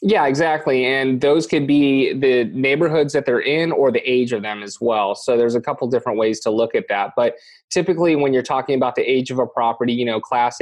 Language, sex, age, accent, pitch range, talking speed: English, male, 20-39, American, 110-130 Hz, 235 wpm